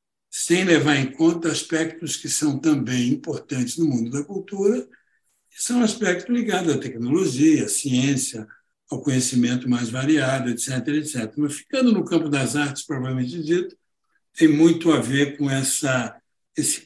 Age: 60-79